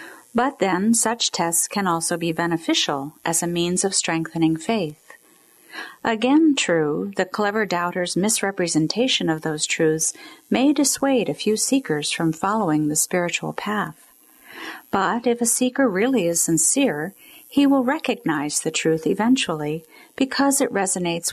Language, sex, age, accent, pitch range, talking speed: English, female, 50-69, American, 165-245 Hz, 140 wpm